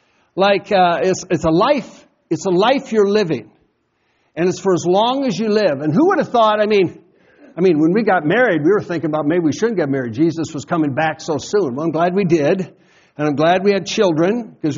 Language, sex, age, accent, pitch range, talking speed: English, male, 60-79, American, 165-220 Hz, 240 wpm